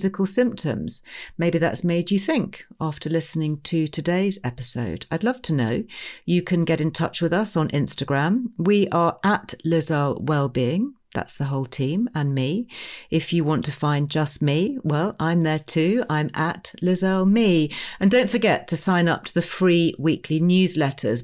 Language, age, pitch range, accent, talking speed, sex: English, 40-59, 135-175 Hz, British, 180 wpm, female